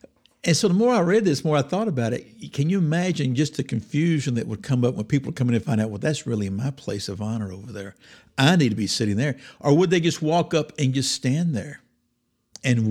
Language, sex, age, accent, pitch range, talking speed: English, male, 60-79, American, 110-145 Hz, 260 wpm